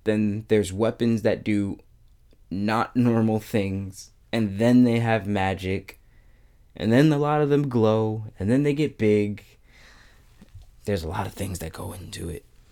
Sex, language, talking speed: male, English, 160 wpm